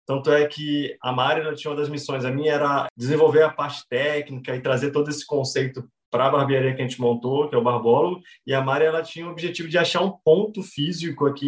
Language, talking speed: Portuguese, 235 wpm